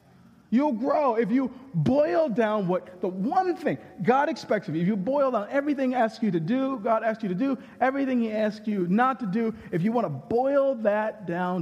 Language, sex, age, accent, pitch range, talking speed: English, male, 40-59, American, 145-230 Hz, 220 wpm